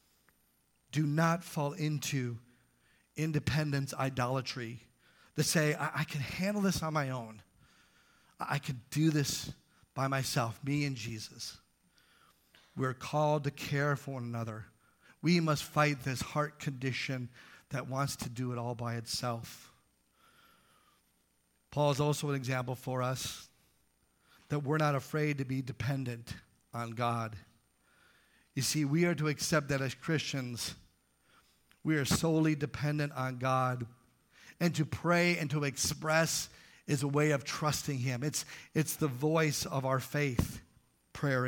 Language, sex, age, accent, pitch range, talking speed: English, male, 40-59, American, 120-155 Hz, 140 wpm